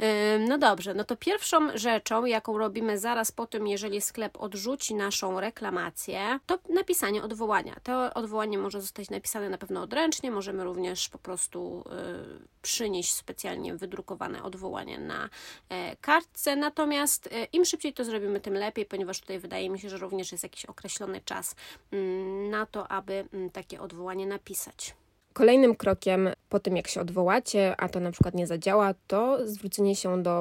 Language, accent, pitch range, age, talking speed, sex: Polish, native, 185-220 Hz, 20-39, 155 wpm, female